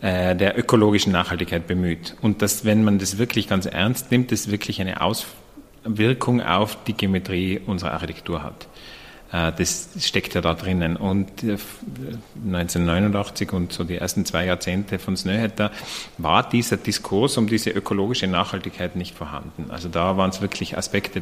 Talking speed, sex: 150 wpm, male